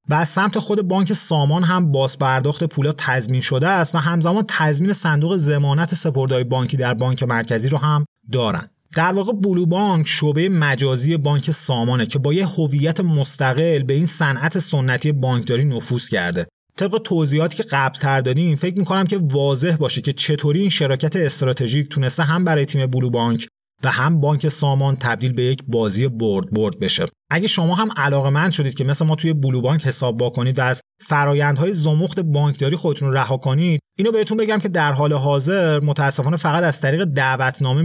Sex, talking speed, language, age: male, 180 wpm, Persian, 30-49